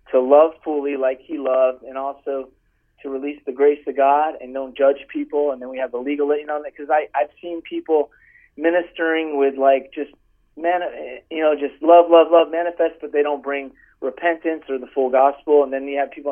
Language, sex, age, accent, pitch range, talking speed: English, male, 40-59, American, 140-170 Hz, 200 wpm